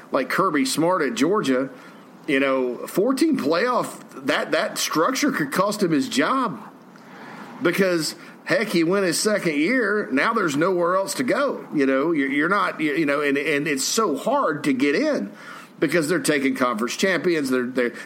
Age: 50-69